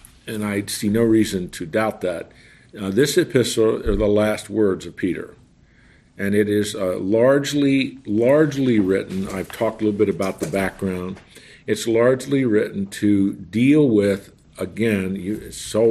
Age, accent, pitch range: 50-69, American, 100-120 Hz